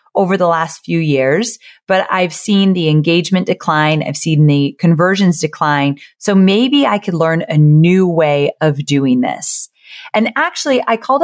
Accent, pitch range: American, 160-200 Hz